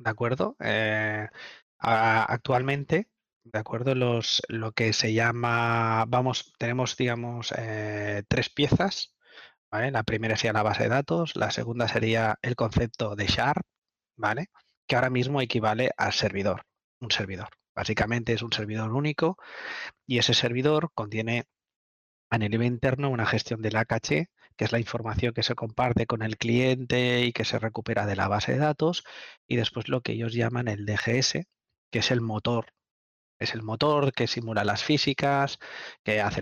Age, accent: 20-39, Spanish